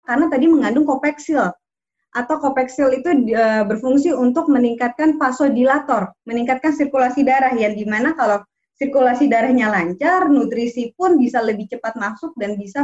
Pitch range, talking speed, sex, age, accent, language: 225-280 Hz, 130 wpm, female, 20-39, native, Indonesian